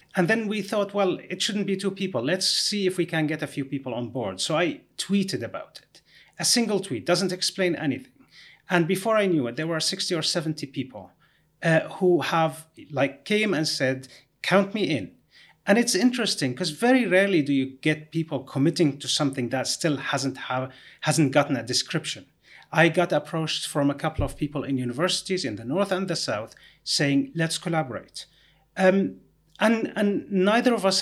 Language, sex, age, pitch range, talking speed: English, male, 30-49, 145-185 Hz, 190 wpm